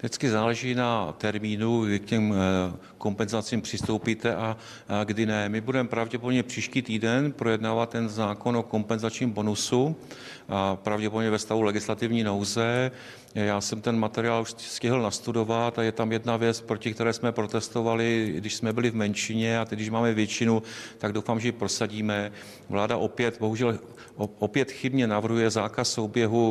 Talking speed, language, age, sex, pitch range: 150 wpm, Czech, 40-59, male, 105-115 Hz